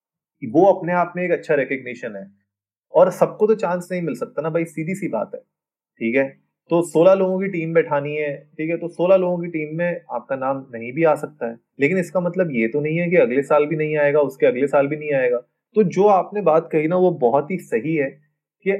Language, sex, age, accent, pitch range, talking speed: Hindi, male, 20-39, native, 135-180 Hz, 245 wpm